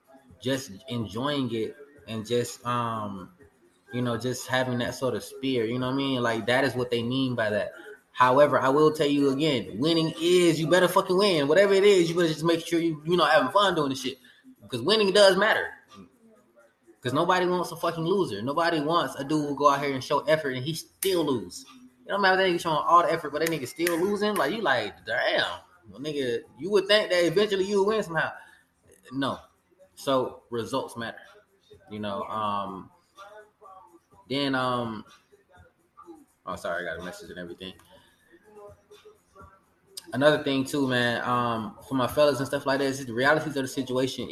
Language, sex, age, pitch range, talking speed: English, male, 20-39, 120-170 Hz, 195 wpm